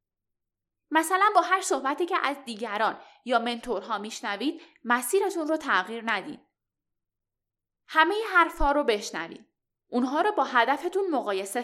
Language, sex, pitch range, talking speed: Persian, female, 210-315 Hz, 120 wpm